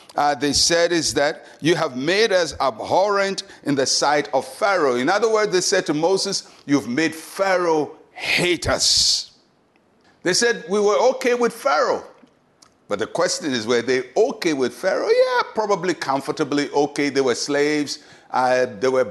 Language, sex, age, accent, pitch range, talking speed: English, male, 60-79, Nigerian, 135-200 Hz, 165 wpm